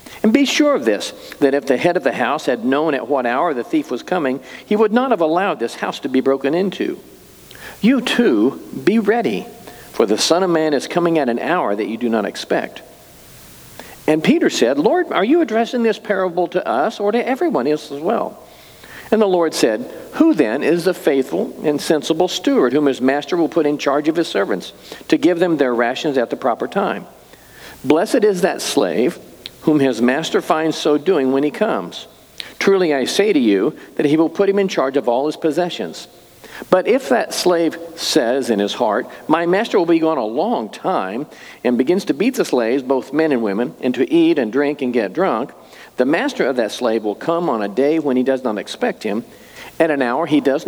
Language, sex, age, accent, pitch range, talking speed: English, male, 50-69, American, 140-205 Hz, 215 wpm